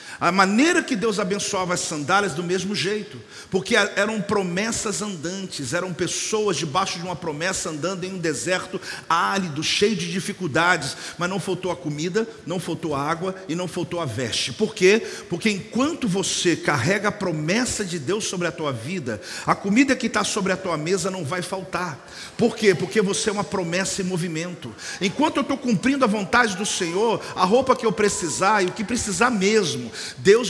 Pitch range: 180-220 Hz